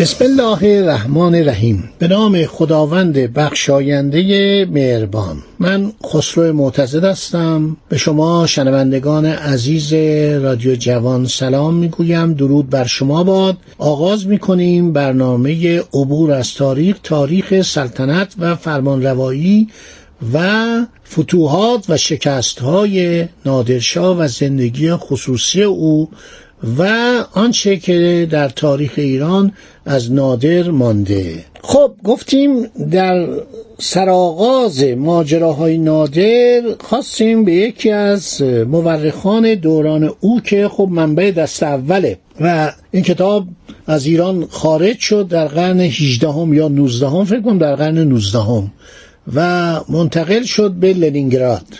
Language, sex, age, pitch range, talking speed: Persian, male, 50-69, 140-190 Hz, 110 wpm